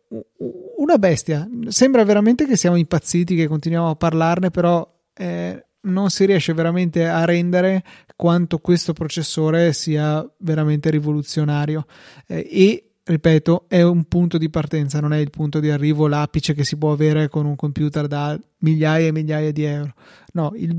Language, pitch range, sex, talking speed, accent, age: Italian, 155-170 Hz, male, 160 wpm, native, 30-49